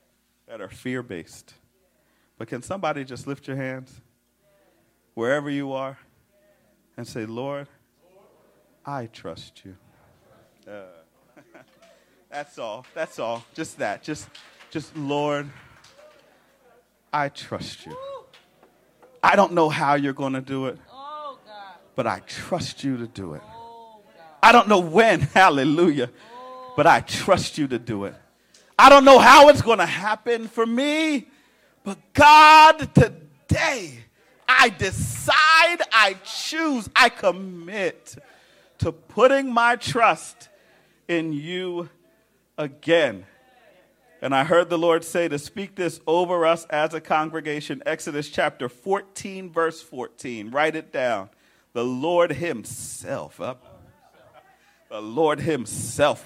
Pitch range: 135-220 Hz